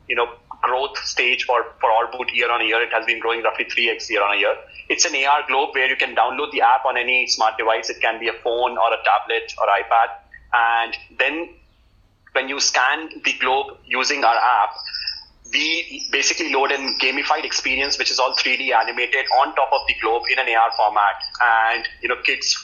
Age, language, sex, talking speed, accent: 30-49, English, male, 210 wpm, Indian